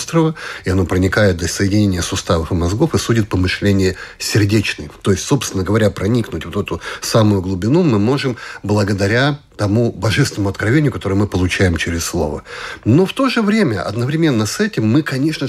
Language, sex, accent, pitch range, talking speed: Russian, male, native, 100-140 Hz, 170 wpm